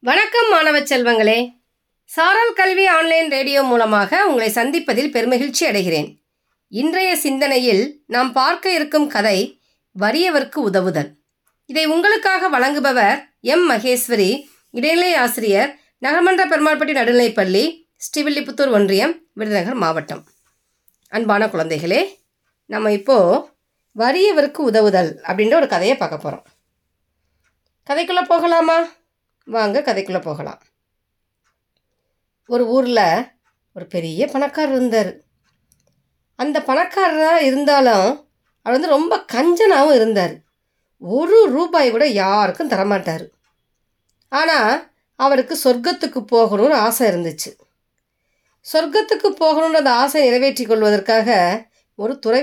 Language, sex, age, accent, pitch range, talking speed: Tamil, female, 20-39, native, 210-315 Hz, 95 wpm